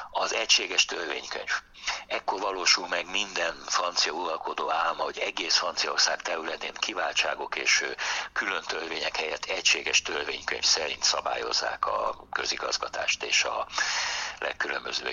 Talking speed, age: 110 wpm, 60-79